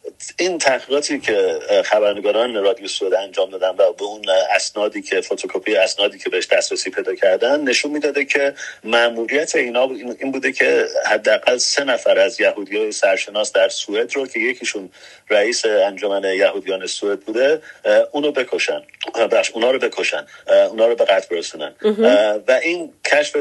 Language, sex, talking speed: Persian, male, 140 wpm